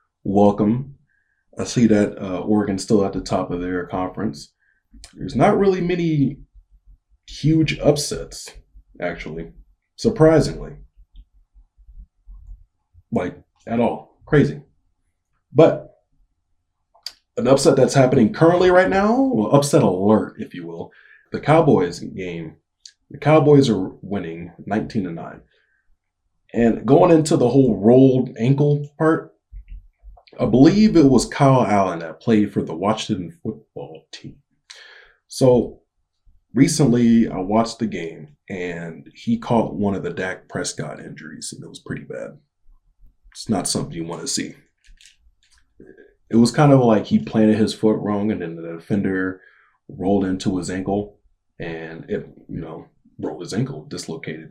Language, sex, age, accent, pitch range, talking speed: English, male, 20-39, American, 90-140 Hz, 135 wpm